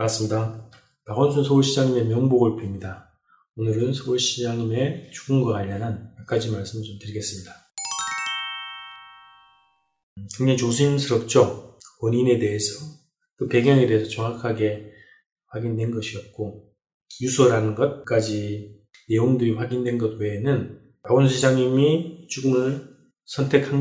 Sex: male